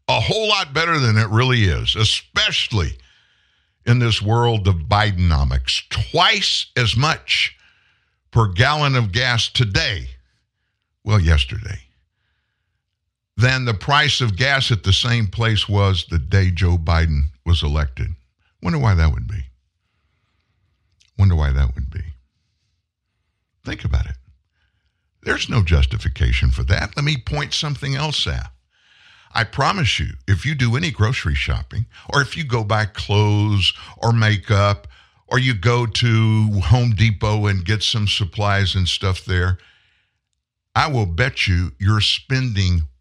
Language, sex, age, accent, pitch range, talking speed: English, male, 60-79, American, 85-115 Hz, 140 wpm